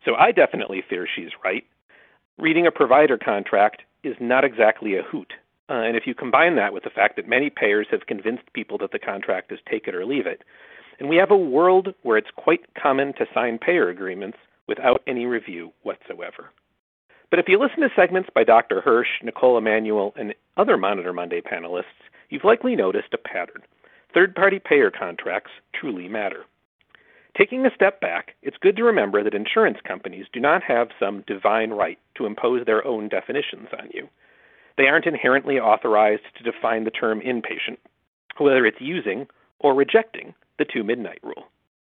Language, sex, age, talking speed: English, male, 50-69, 175 wpm